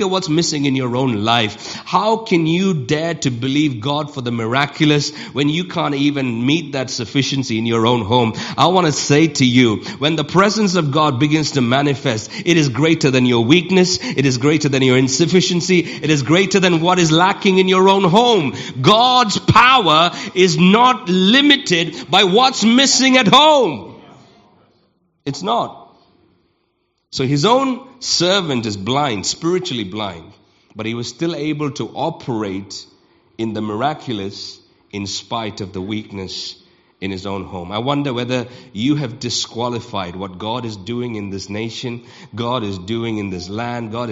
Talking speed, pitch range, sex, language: 165 wpm, 110-170 Hz, male, English